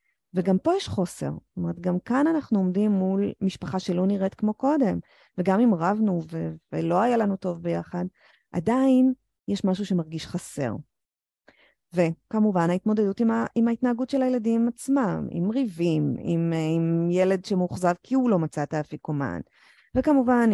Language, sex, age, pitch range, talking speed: Hebrew, female, 30-49, 165-215 Hz, 150 wpm